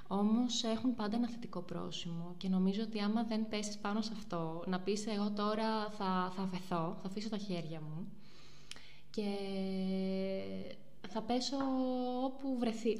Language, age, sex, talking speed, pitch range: Greek, 20-39, female, 150 wpm, 180-220 Hz